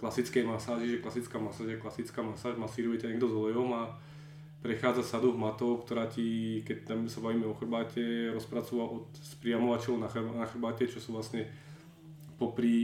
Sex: male